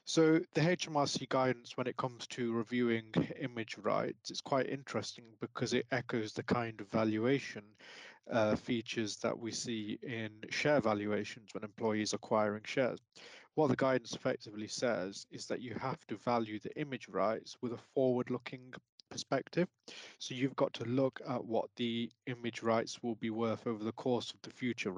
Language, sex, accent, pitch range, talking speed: English, male, British, 110-125 Hz, 170 wpm